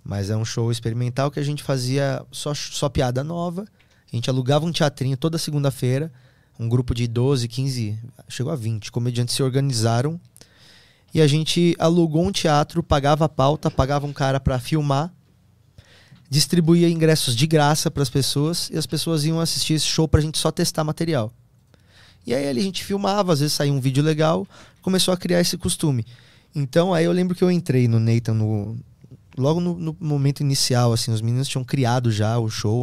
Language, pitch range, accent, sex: Portuguese, 120-160 Hz, Brazilian, male